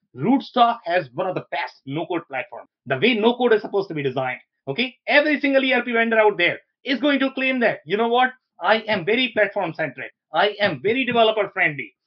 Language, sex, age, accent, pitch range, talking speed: English, male, 30-49, Indian, 155-220 Hz, 195 wpm